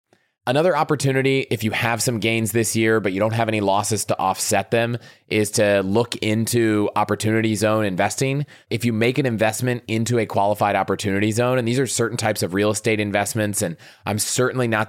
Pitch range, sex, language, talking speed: 100-120 Hz, male, English, 195 wpm